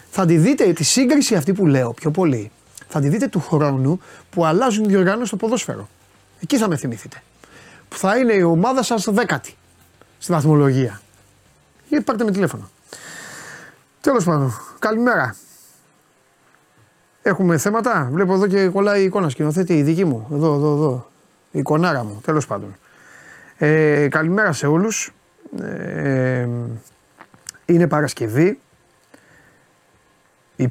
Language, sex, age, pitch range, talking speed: Greek, male, 30-49, 140-205 Hz, 135 wpm